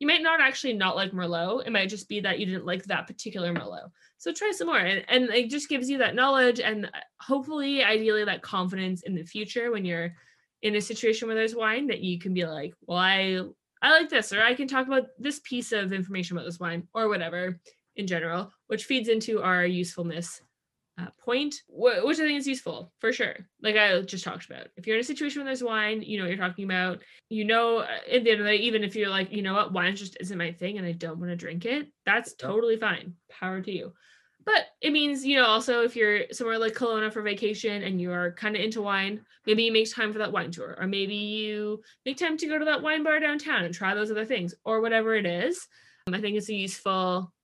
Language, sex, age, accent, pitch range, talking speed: English, female, 20-39, American, 185-245 Hz, 240 wpm